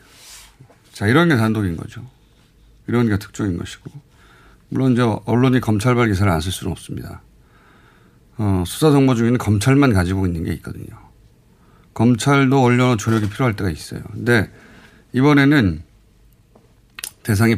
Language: Korean